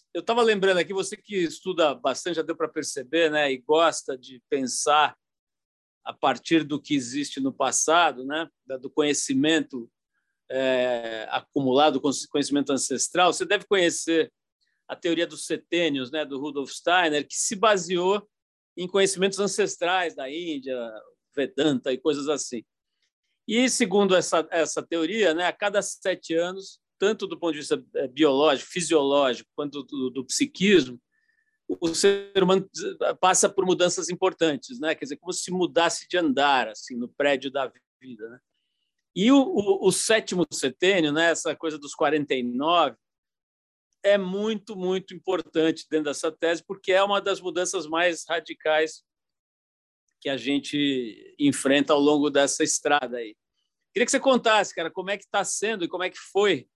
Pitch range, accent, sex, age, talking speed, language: 145-195 Hz, Brazilian, male, 50-69, 155 wpm, Portuguese